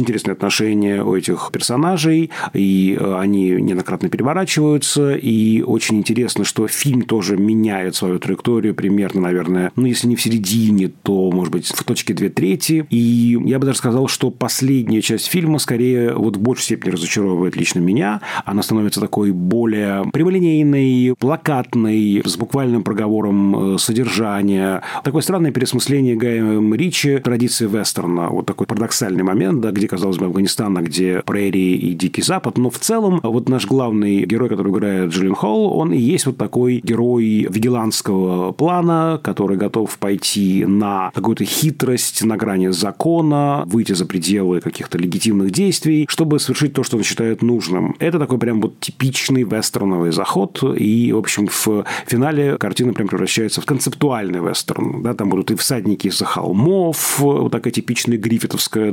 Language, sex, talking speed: Russian, male, 155 wpm